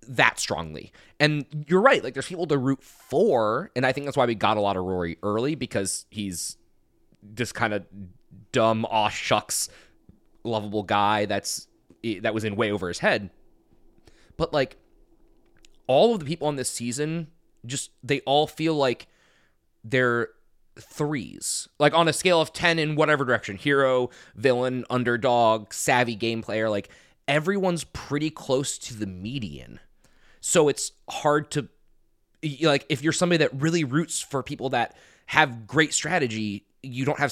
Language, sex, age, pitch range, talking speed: English, male, 20-39, 110-155 Hz, 160 wpm